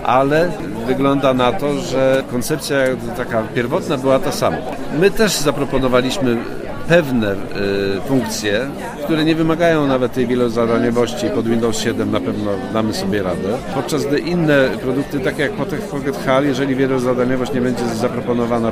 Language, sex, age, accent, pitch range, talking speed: Polish, male, 50-69, native, 125-145 Hz, 140 wpm